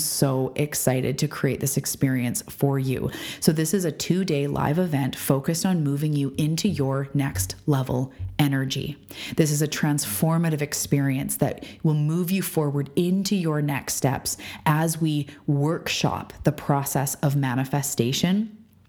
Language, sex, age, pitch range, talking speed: English, female, 20-39, 135-165 Hz, 145 wpm